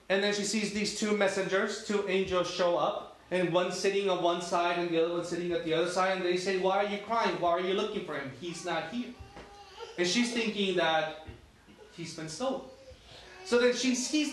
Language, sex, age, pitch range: English, male, 30-49, 170-230 Hz